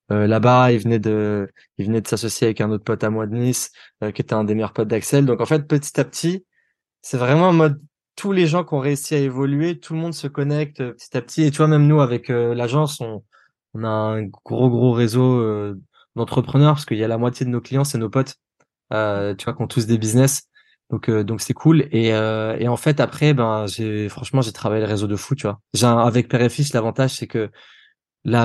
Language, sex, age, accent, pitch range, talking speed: French, male, 20-39, French, 110-135 Hz, 245 wpm